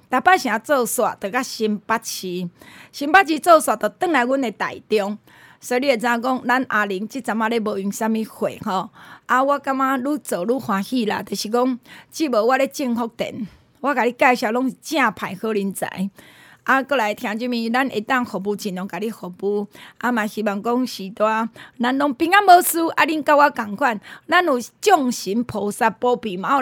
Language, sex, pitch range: Chinese, female, 210-275 Hz